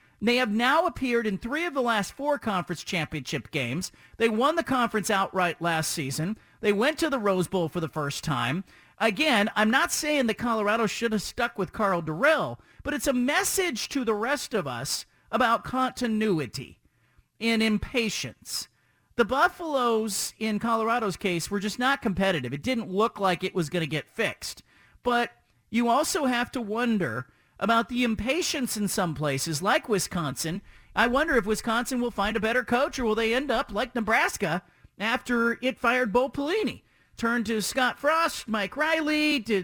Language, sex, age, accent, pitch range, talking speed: English, male, 40-59, American, 180-255 Hz, 175 wpm